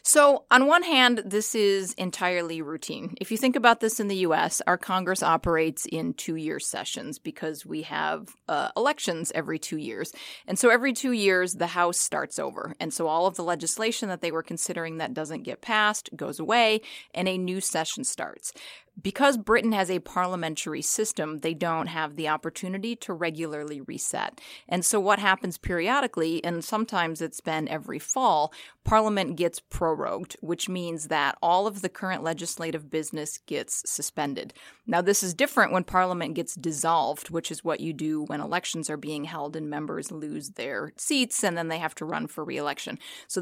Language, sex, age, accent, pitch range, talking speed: English, female, 30-49, American, 160-215 Hz, 180 wpm